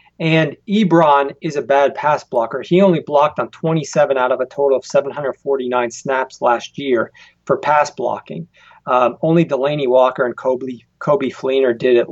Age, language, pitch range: 40-59, English, 135-165 Hz